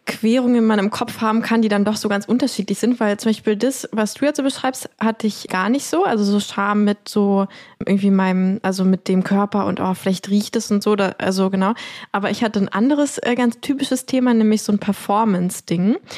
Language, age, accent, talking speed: German, 20-39, German, 225 wpm